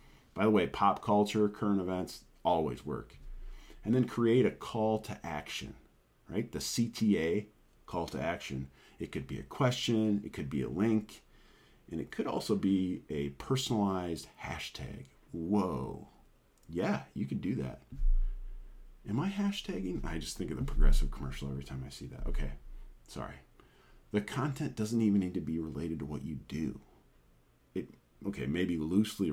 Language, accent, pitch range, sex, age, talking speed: English, American, 70-110 Hz, male, 40-59, 160 wpm